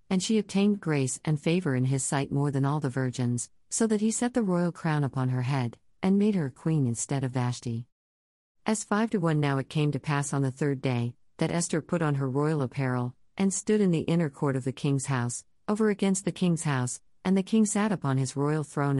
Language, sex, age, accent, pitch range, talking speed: English, female, 50-69, American, 130-170 Hz, 235 wpm